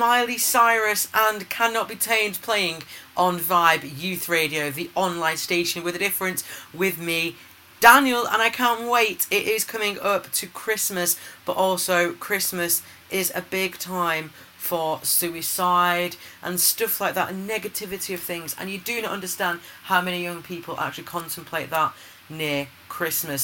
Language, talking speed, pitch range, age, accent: English, 155 wpm, 155-190 Hz, 40-59, British